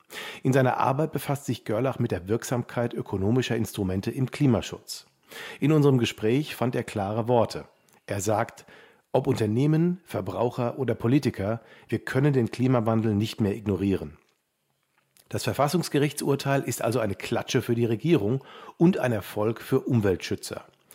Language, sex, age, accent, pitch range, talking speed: German, male, 50-69, German, 105-135 Hz, 140 wpm